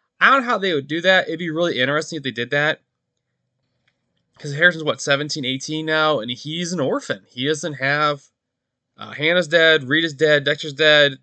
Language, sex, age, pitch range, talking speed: English, male, 20-39, 120-150 Hz, 190 wpm